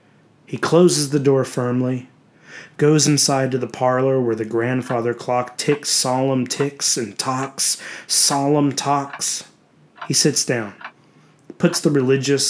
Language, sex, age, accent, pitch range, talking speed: English, male, 30-49, American, 120-150 Hz, 130 wpm